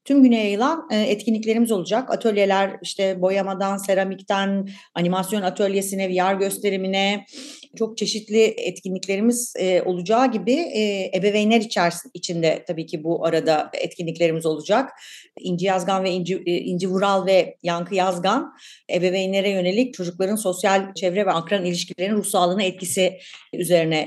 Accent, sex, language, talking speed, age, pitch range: native, female, Turkish, 115 wpm, 40-59, 180-215 Hz